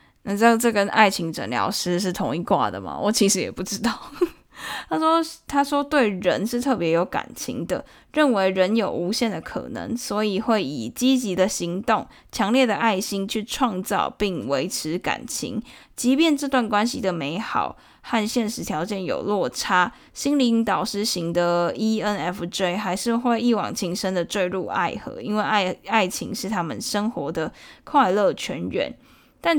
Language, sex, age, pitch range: Chinese, female, 10-29, 190-240 Hz